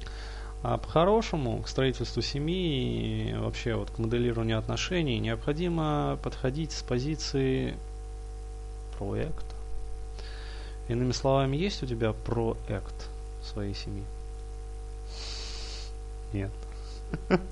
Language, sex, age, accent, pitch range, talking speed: Russian, male, 20-39, native, 110-125 Hz, 90 wpm